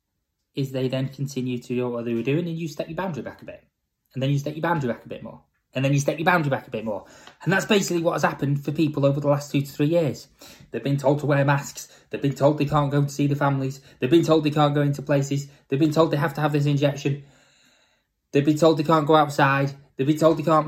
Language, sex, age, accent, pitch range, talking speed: English, male, 20-39, British, 130-160 Hz, 285 wpm